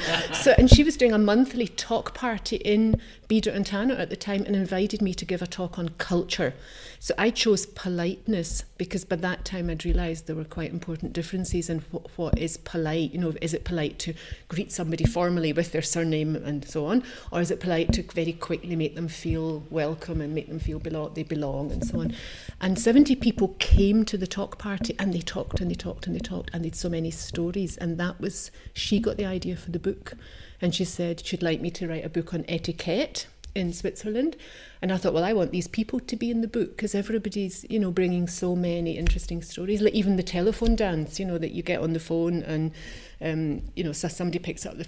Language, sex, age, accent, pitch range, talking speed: English, female, 40-59, British, 160-195 Hz, 230 wpm